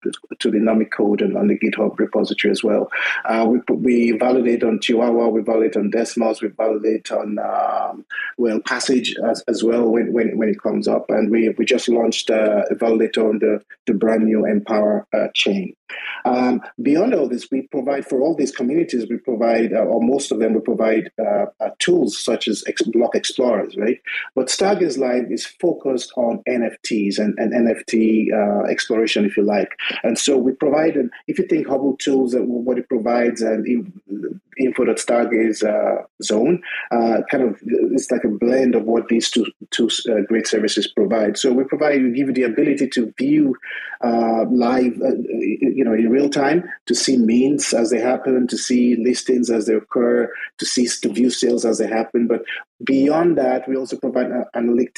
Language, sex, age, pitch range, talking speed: English, male, 30-49, 110-125 Hz, 190 wpm